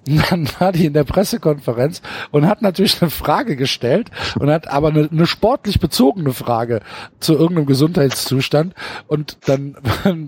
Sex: male